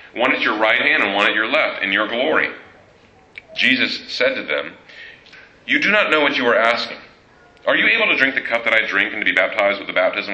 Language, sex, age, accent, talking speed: English, male, 40-59, American, 245 wpm